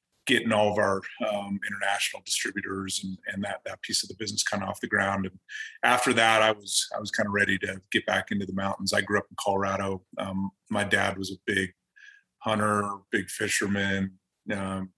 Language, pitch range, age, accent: English, 100-110 Hz, 30-49, American